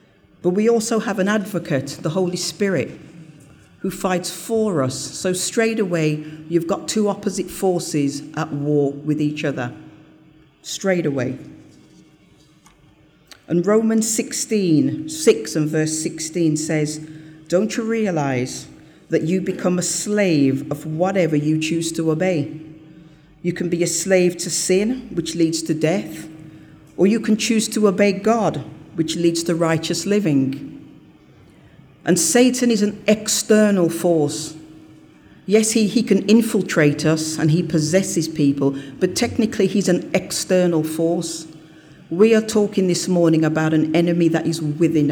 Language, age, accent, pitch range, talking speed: English, 40-59, British, 155-190 Hz, 140 wpm